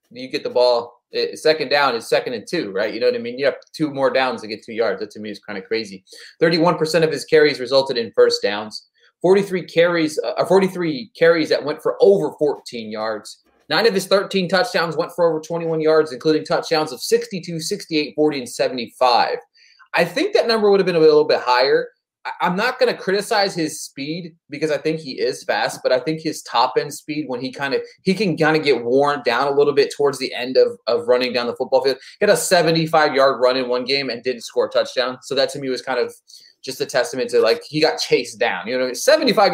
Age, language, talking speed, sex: 30-49, English, 235 wpm, male